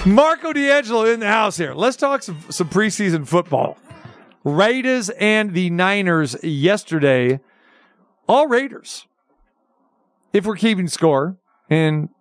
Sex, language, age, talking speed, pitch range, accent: male, English, 50-69, 120 wpm, 145-195 Hz, American